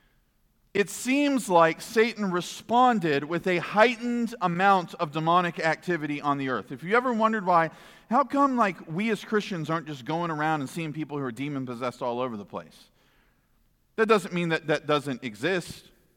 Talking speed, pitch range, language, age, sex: 175 wpm, 155-210 Hz, English, 40-59, male